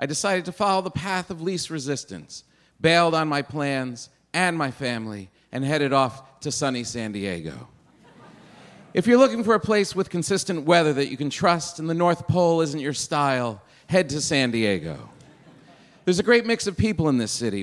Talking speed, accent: 190 wpm, American